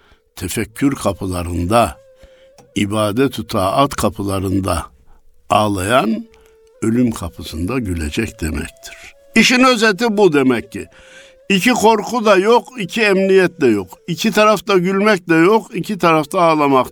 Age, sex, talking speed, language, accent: 60-79, male, 110 wpm, Turkish, native